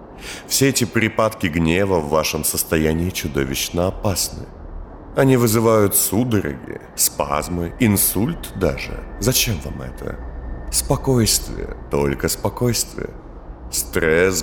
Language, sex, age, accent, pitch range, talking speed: Russian, male, 30-49, native, 80-110 Hz, 90 wpm